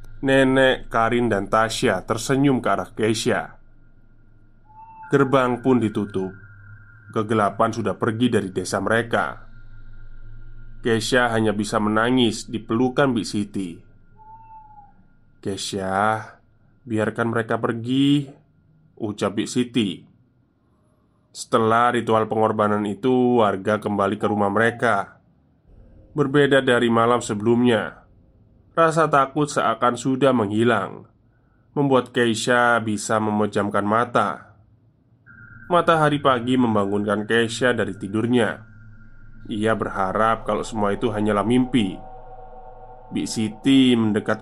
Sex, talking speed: male, 95 wpm